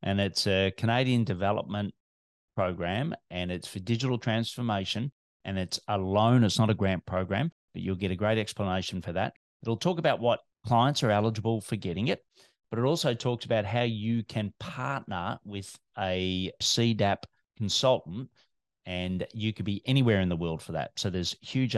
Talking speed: 175 wpm